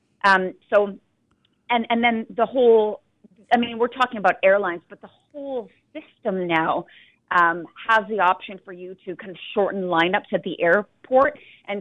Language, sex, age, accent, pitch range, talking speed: English, female, 40-59, American, 180-220 Hz, 170 wpm